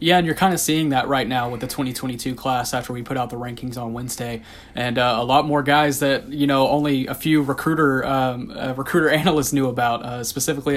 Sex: male